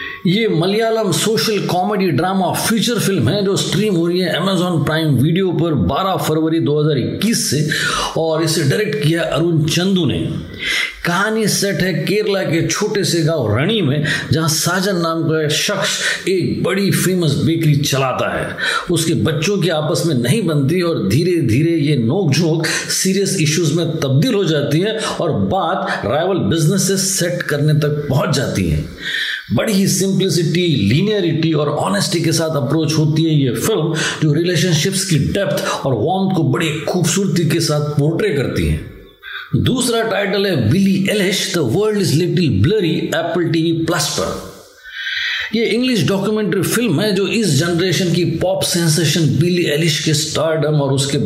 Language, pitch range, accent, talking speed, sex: Hindi, 155-190 Hz, native, 160 wpm, male